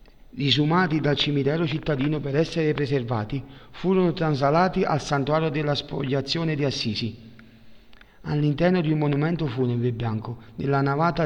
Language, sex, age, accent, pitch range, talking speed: Italian, male, 40-59, native, 125-155 Hz, 125 wpm